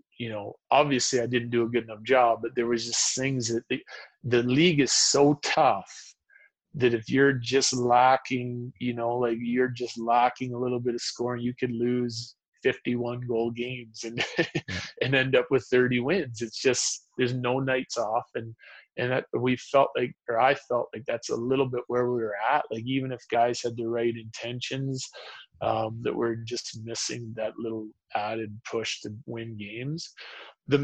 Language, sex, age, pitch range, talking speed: English, male, 30-49, 115-130 Hz, 185 wpm